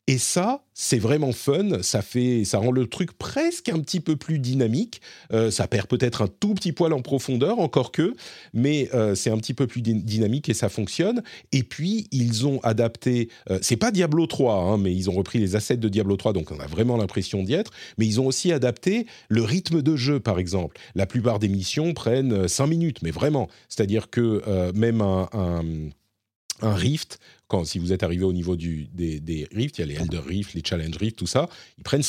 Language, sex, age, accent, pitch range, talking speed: French, male, 40-59, French, 95-140 Hz, 225 wpm